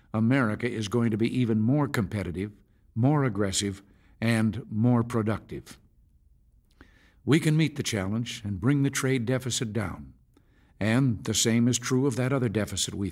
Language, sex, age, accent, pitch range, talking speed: English, male, 60-79, American, 105-130 Hz, 155 wpm